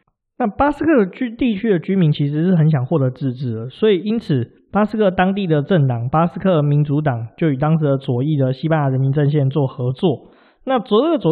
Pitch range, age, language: 135-185 Hz, 20-39, Chinese